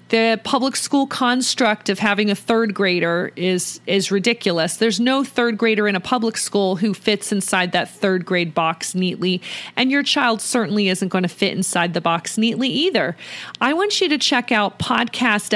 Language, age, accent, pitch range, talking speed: English, 40-59, American, 195-260 Hz, 185 wpm